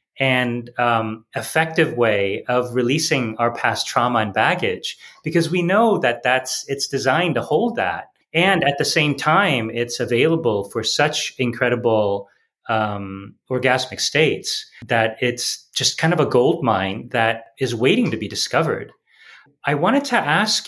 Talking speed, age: 150 wpm, 30-49